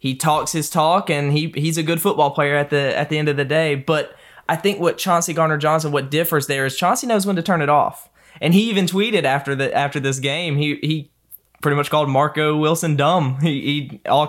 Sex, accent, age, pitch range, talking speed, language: male, American, 20-39, 140-155 Hz, 240 wpm, English